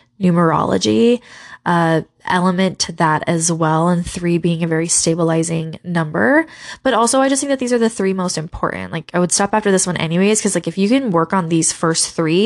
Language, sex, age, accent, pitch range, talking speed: English, female, 20-39, American, 165-220 Hz, 210 wpm